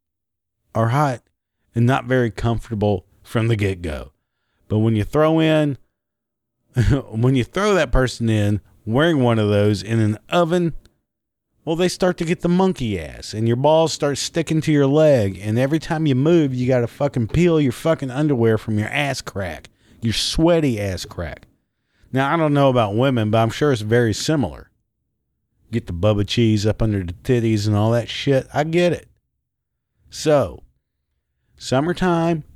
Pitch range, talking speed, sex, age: 100-150 Hz, 170 wpm, male, 40-59